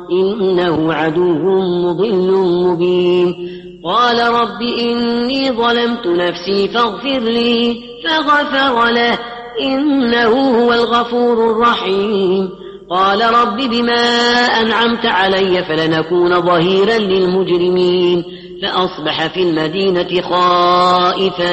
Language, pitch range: Arabic, 180-235 Hz